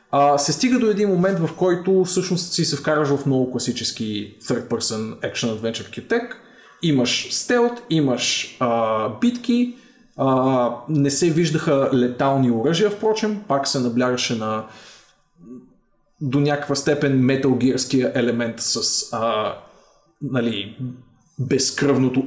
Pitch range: 130-180 Hz